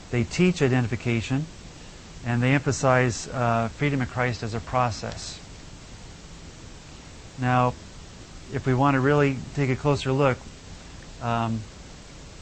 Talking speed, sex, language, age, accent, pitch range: 115 wpm, male, English, 40-59, American, 115-145 Hz